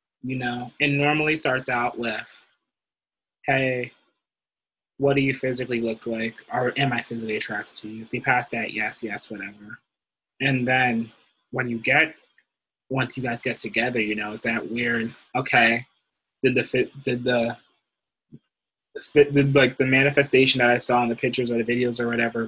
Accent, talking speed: American, 175 wpm